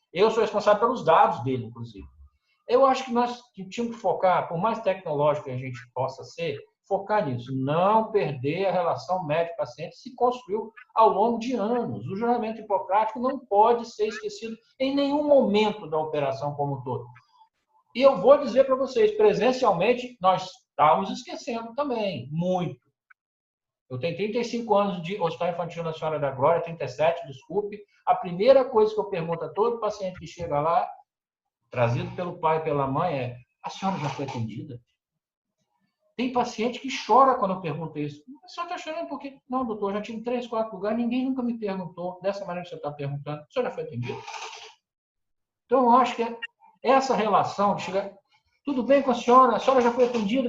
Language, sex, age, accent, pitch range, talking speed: Portuguese, male, 60-79, Brazilian, 170-250 Hz, 180 wpm